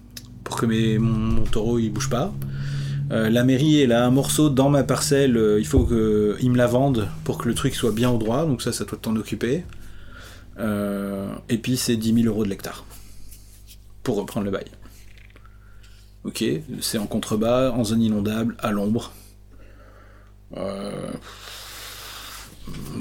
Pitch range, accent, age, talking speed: 100-125 Hz, French, 30-49, 160 wpm